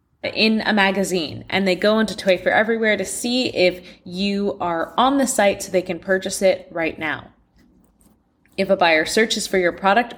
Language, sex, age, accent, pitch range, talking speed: English, female, 20-39, American, 185-240 Hz, 190 wpm